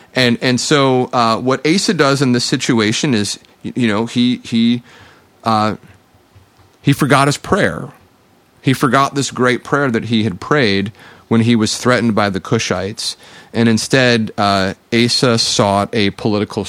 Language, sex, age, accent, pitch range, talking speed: English, male, 30-49, American, 110-135 Hz, 155 wpm